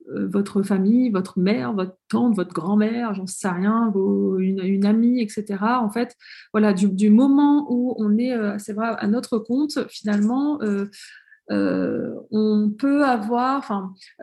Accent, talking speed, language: French, 160 wpm, French